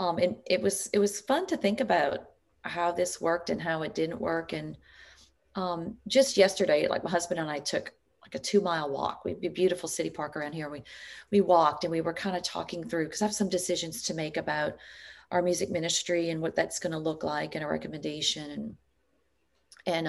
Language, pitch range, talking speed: English, 170-220 Hz, 220 wpm